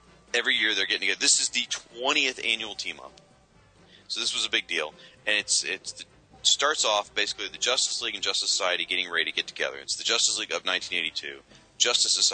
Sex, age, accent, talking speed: male, 30-49, American, 205 wpm